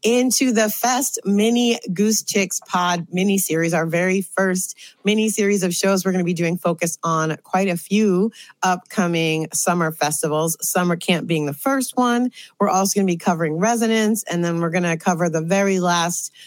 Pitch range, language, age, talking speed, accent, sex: 160-205 Hz, English, 30-49, 185 wpm, American, female